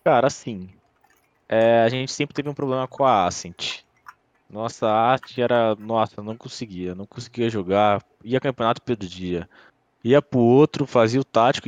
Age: 20-39